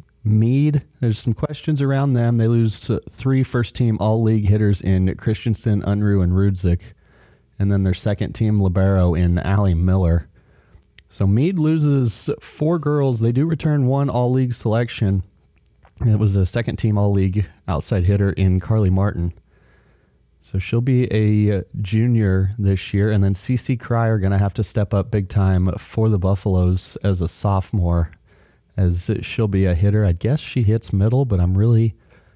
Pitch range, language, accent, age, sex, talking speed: 95-115 Hz, English, American, 30-49, male, 160 wpm